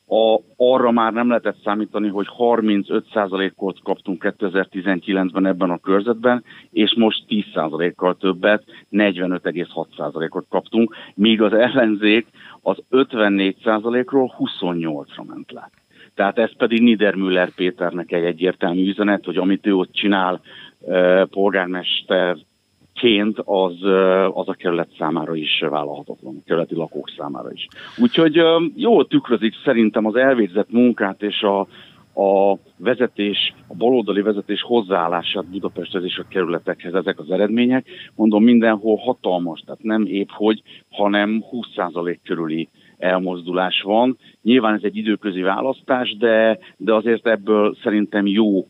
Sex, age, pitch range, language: male, 60-79, 95-115 Hz, Hungarian